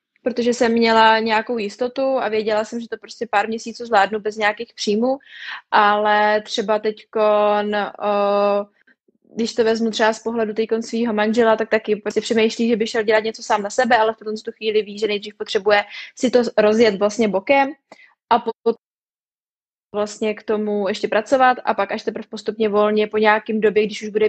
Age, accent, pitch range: 20-39, native, 210-230 Hz